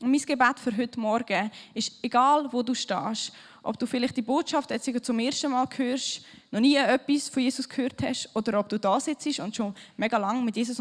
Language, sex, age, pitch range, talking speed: German, female, 10-29, 215-275 Hz, 210 wpm